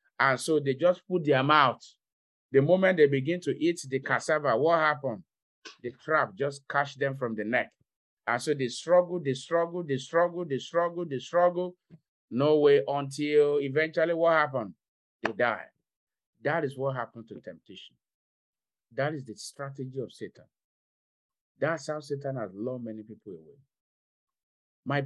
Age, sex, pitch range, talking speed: 50-69, male, 115-150 Hz, 160 wpm